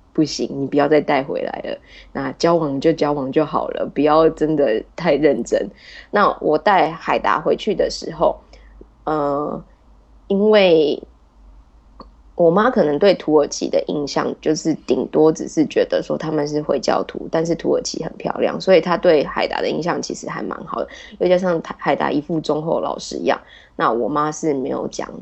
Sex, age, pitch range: female, 20-39, 150-205 Hz